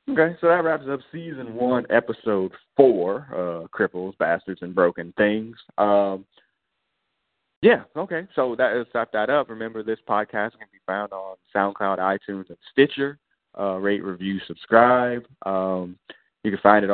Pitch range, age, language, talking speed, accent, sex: 100-115 Hz, 20-39, English, 155 wpm, American, male